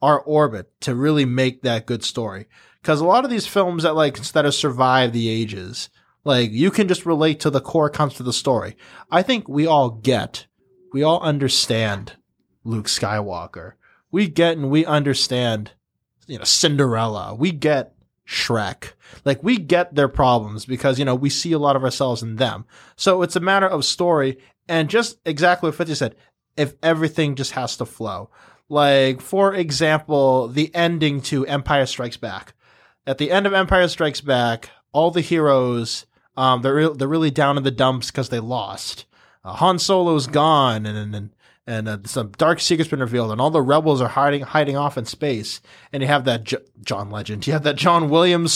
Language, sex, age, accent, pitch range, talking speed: English, male, 20-39, American, 125-160 Hz, 190 wpm